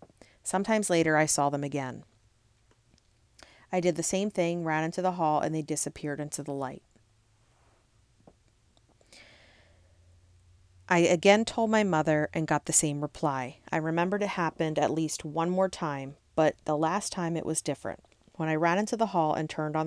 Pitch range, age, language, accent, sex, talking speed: 140-170 Hz, 40-59, English, American, female, 170 wpm